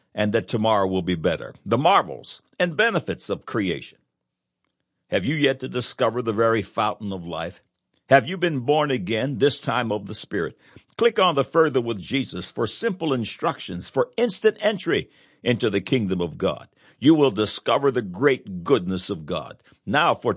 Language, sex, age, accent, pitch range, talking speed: English, male, 60-79, American, 105-155 Hz, 175 wpm